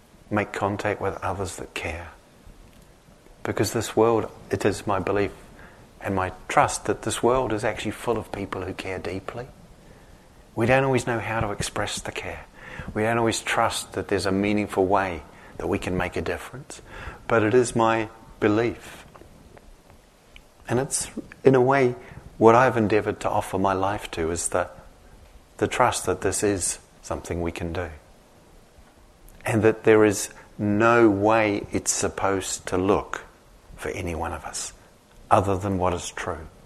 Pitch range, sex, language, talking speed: 95-115 Hz, male, English, 165 wpm